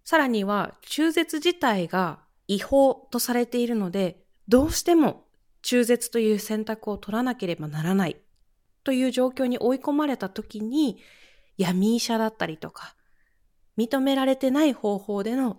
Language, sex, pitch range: Japanese, female, 185-265 Hz